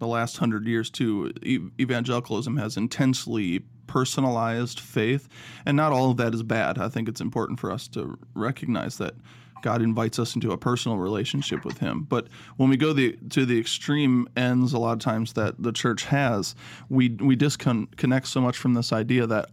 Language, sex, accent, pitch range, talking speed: English, male, American, 115-135 Hz, 185 wpm